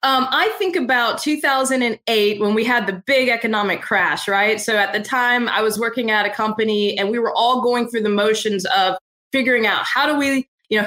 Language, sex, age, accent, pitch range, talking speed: English, female, 20-39, American, 215-270 Hz, 215 wpm